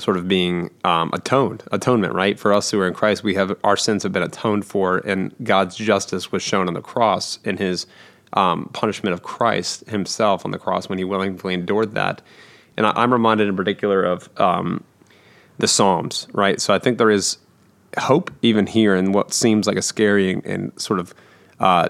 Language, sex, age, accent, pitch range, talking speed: English, male, 30-49, American, 95-105 Hz, 200 wpm